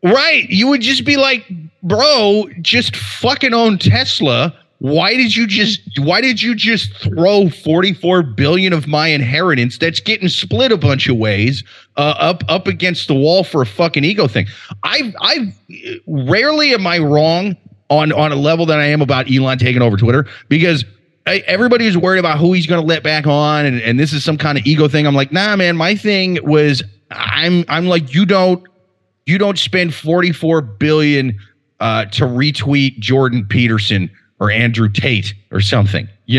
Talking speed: 180 wpm